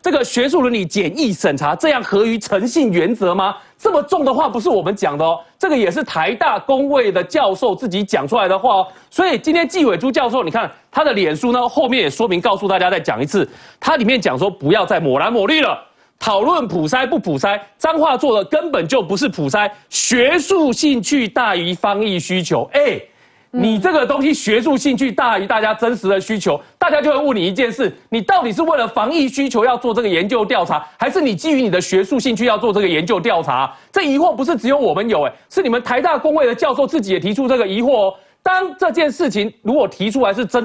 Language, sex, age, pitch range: Chinese, male, 40-59, 200-295 Hz